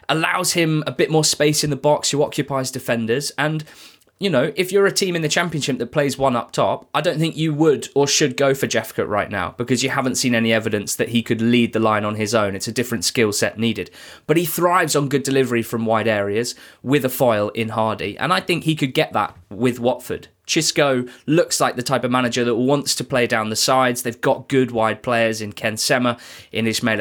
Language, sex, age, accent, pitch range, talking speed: English, male, 20-39, British, 110-140 Hz, 240 wpm